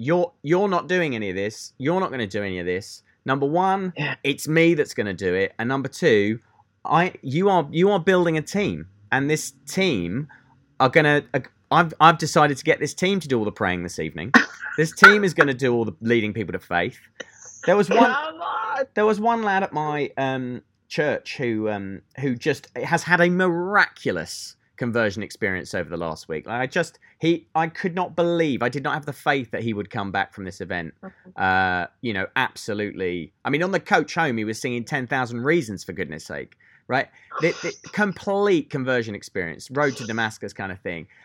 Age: 30-49